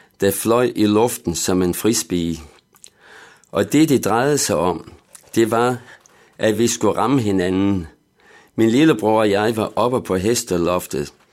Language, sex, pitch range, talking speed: Danish, male, 95-115 Hz, 150 wpm